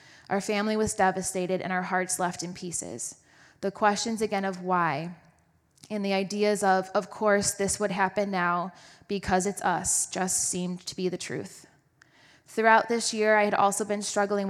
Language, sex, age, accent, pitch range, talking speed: English, female, 20-39, American, 185-205 Hz, 175 wpm